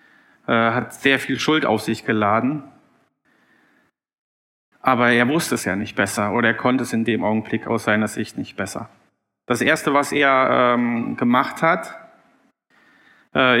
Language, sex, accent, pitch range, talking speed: German, male, German, 115-140 Hz, 150 wpm